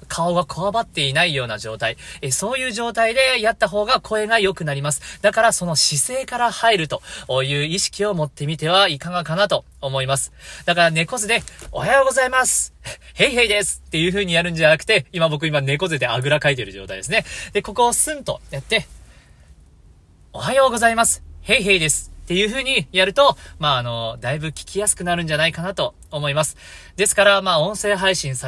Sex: male